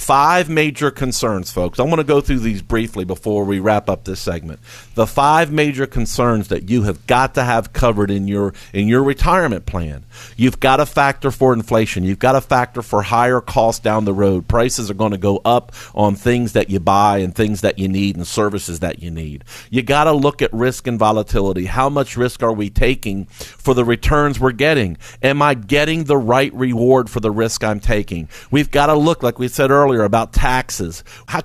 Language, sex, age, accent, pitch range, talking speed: English, male, 50-69, American, 105-145 Hz, 215 wpm